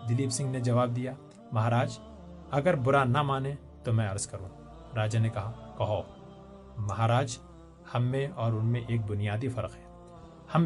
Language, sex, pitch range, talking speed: Urdu, male, 115-155 Hz, 140 wpm